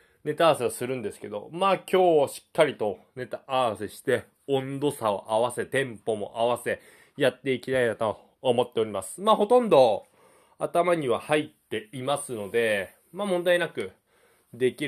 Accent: native